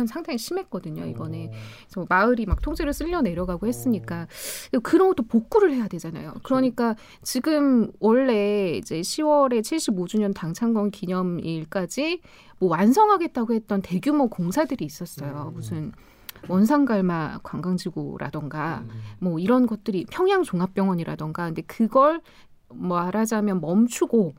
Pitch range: 175-260 Hz